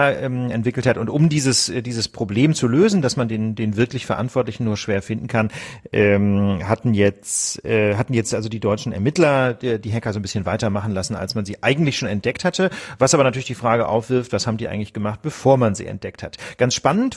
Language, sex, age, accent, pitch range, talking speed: German, male, 40-59, German, 110-135 Hz, 205 wpm